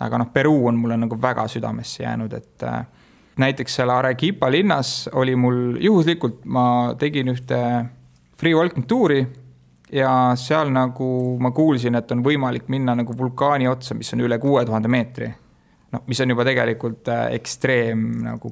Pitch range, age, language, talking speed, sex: 120-135 Hz, 30-49, English, 155 wpm, male